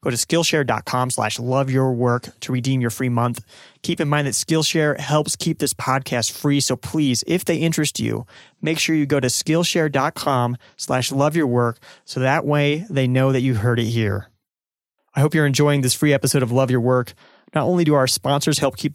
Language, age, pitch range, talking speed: English, 30-49, 125-155 Hz, 190 wpm